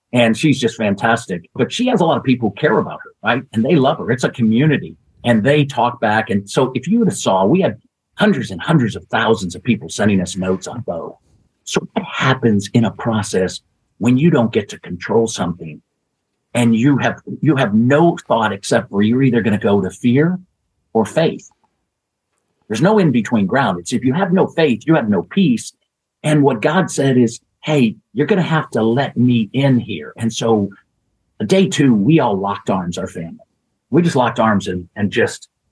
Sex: male